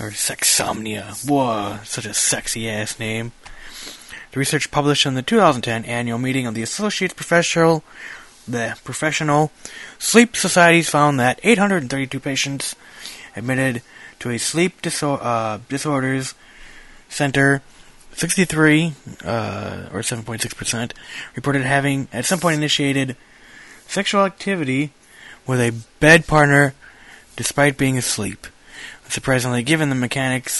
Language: English